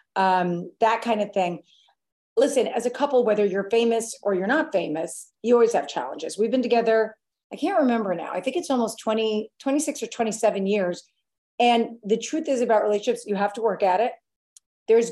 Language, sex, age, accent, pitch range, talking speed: English, female, 40-59, American, 210-260 Hz, 195 wpm